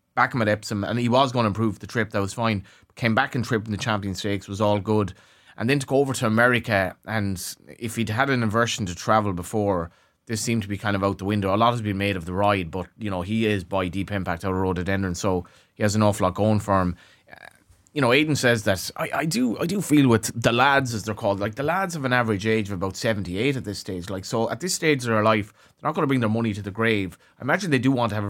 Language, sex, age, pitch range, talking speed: English, male, 30-49, 100-115 Hz, 285 wpm